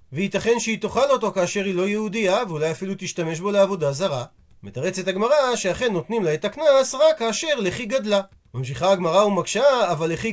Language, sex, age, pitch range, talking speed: Hebrew, male, 40-59, 180-225 Hz, 175 wpm